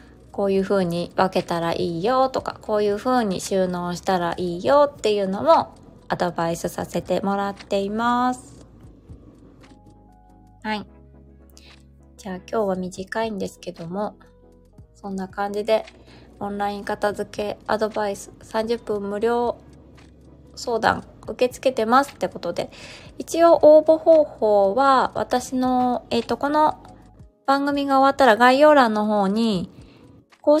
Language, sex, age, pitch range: Japanese, female, 20-39, 185-250 Hz